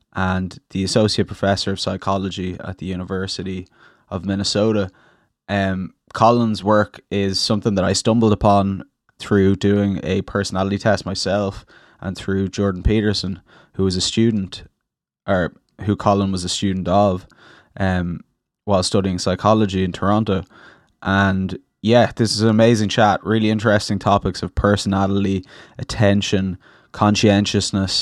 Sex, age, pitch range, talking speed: male, 20-39, 95-105 Hz, 130 wpm